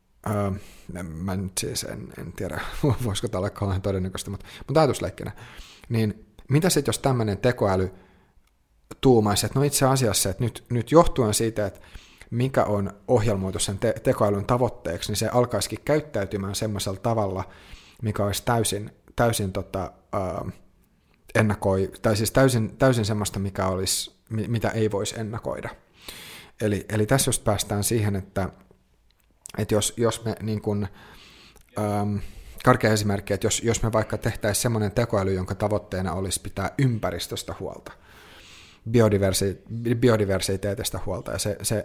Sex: male